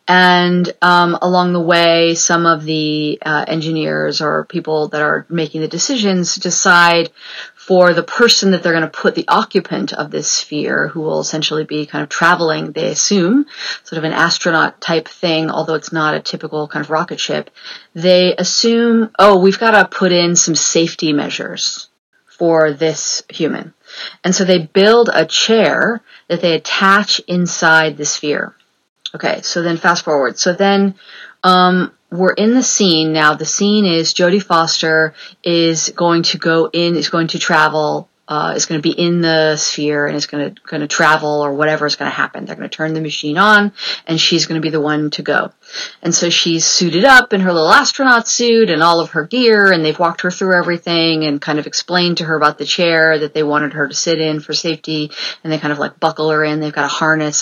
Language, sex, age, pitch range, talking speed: English, female, 40-59, 155-180 Hz, 200 wpm